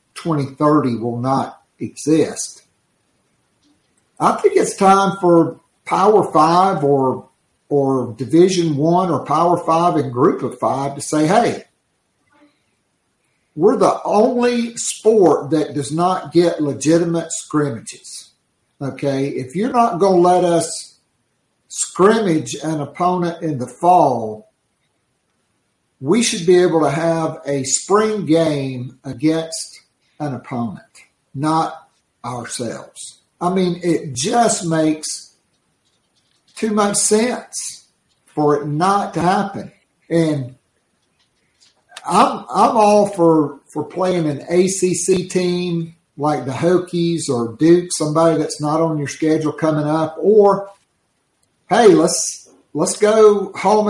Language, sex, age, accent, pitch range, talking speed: English, male, 50-69, American, 145-185 Hz, 115 wpm